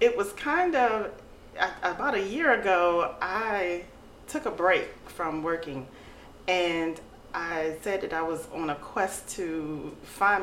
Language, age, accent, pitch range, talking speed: English, 40-59, American, 165-210 Hz, 145 wpm